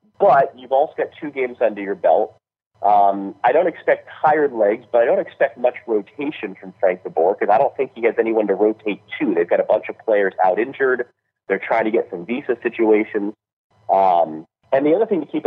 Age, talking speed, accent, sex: 40-59, 215 wpm, American, male